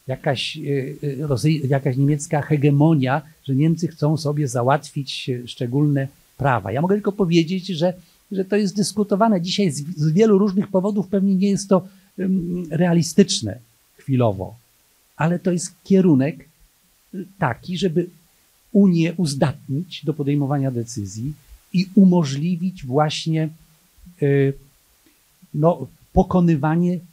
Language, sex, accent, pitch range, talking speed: Polish, male, native, 135-170 Hz, 100 wpm